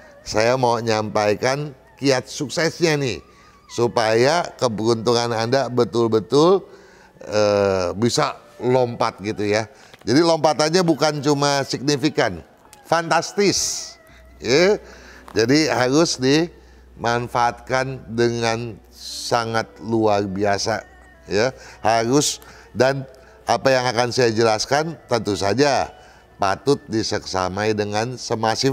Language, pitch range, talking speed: Indonesian, 105-140 Hz, 90 wpm